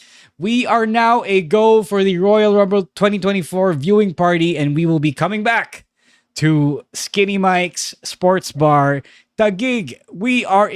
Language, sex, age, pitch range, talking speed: English, male, 20-39, 115-175 Hz, 150 wpm